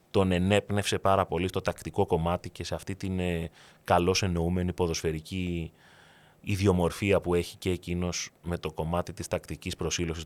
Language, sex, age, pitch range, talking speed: Greek, male, 30-49, 90-120 Hz, 145 wpm